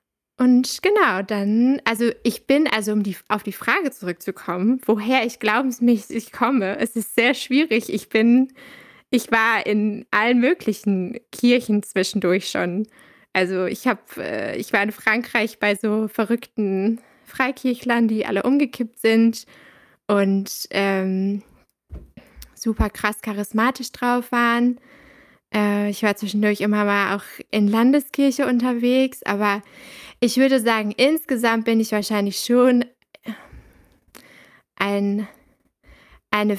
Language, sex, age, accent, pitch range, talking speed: German, female, 20-39, German, 205-250 Hz, 120 wpm